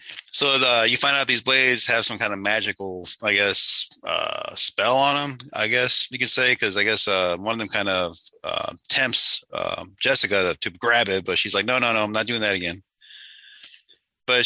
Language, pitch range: English, 100-125 Hz